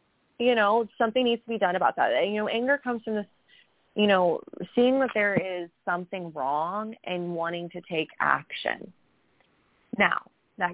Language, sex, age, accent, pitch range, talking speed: English, female, 20-39, American, 160-210 Hz, 170 wpm